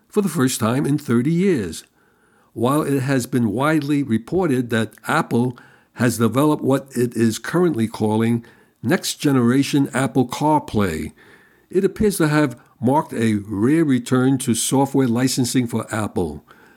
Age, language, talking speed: 60-79, English, 135 wpm